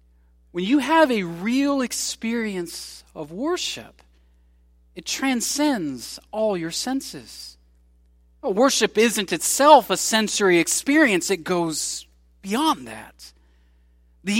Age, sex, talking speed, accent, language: 40-59, male, 100 wpm, American, English